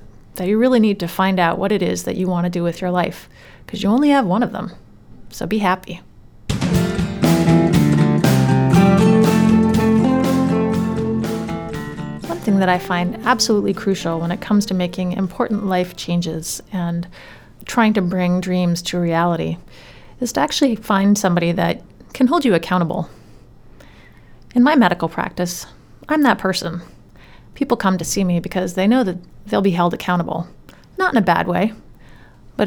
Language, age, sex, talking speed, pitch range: English, 30-49, female, 160 wpm, 175-225 Hz